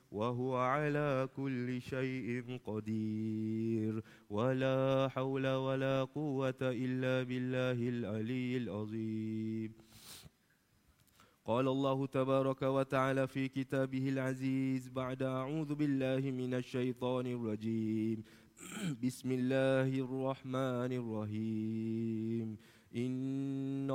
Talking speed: 80 wpm